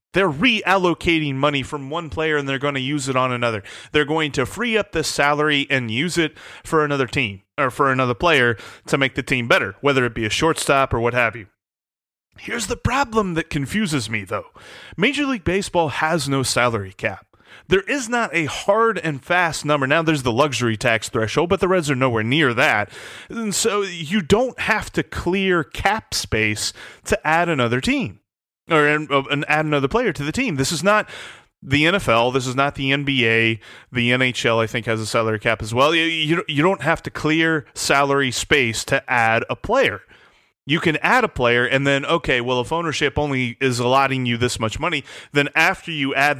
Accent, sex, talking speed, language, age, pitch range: American, male, 200 wpm, English, 30-49, 125-175 Hz